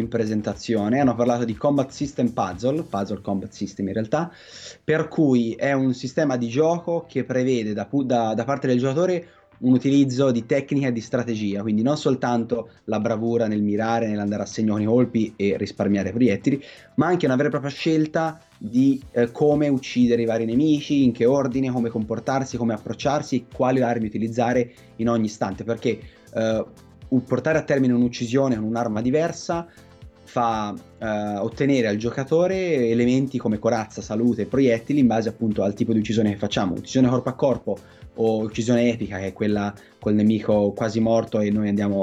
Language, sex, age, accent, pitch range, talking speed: Italian, male, 30-49, native, 105-130 Hz, 175 wpm